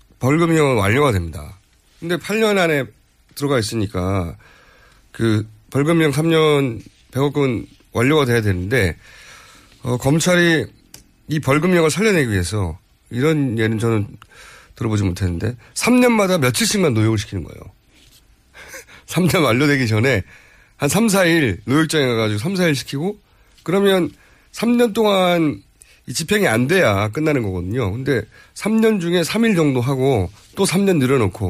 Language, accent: Korean, native